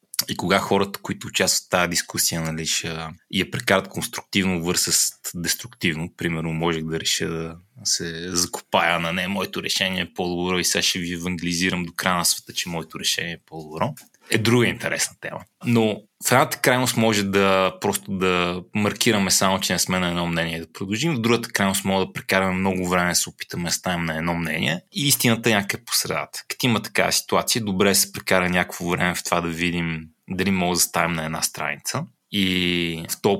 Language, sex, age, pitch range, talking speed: Bulgarian, male, 20-39, 85-100 Hz, 200 wpm